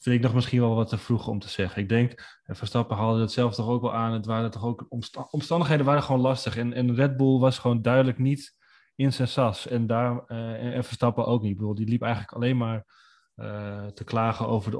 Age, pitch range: 20-39, 115-130 Hz